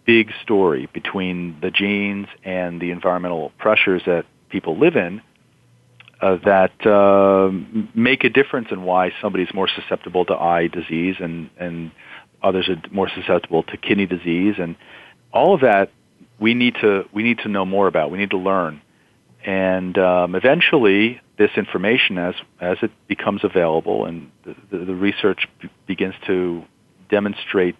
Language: English